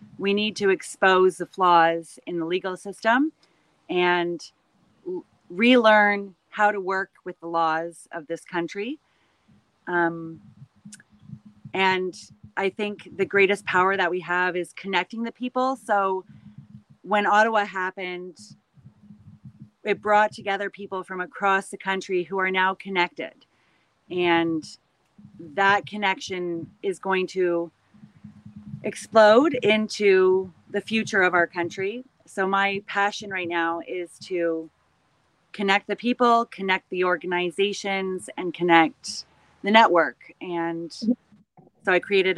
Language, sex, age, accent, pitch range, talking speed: English, female, 30-49, American, 175-205 Hz, 120 wpm